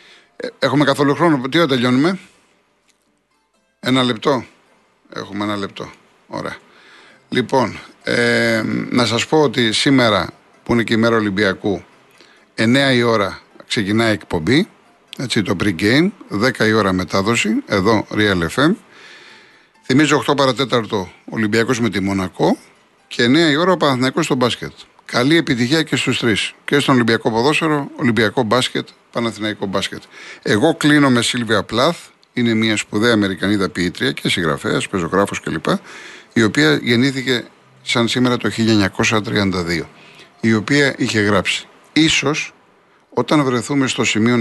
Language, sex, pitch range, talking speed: Greek, male, 105-140 Hz, 135 wpm